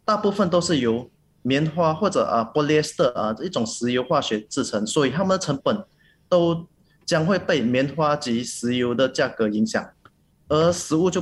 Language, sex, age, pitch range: Chinese, male, 20-39, 120-170 Hz